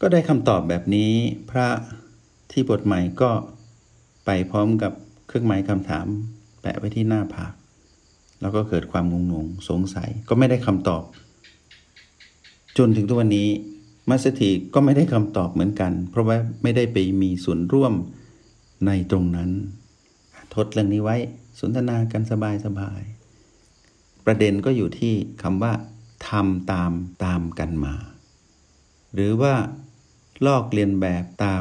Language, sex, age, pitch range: Thai, male, 60-79, 95-120 Hz